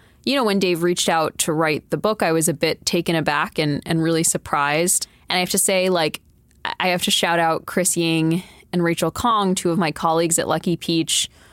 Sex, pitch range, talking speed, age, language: female, 160-185 Hz, 225 wpm, 20-39, English